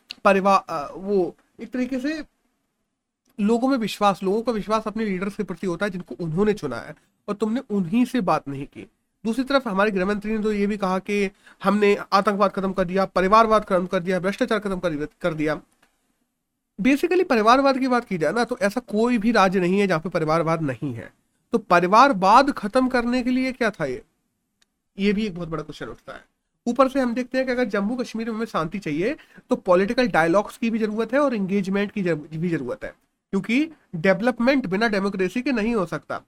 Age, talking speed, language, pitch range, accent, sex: 30-49, 200 wpm, Hindi, 190-245 Hz, native, male